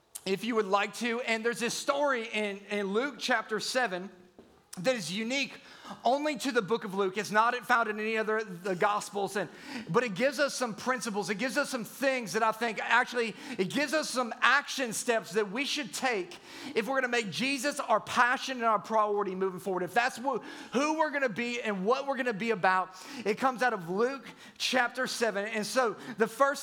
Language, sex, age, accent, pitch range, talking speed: English, male, 30-49, American, 210-255 Hz, 215 wpm